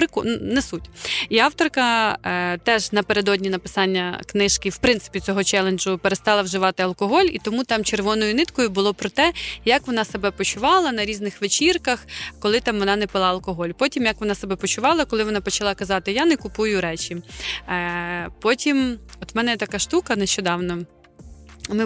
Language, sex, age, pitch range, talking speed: Ukrainian, female, 20-39, 195-260 Hz, 160 wpm